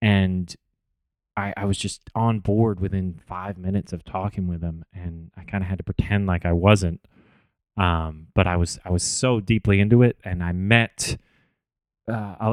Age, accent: 30-49, American